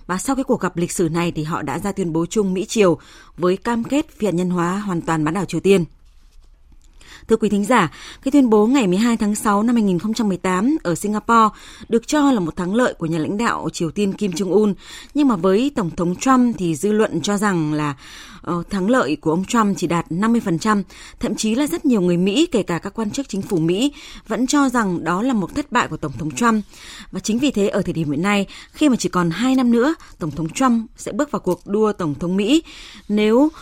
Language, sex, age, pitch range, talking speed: Vietnamese, female, 20-39, 170-230 Hz, 240 wpm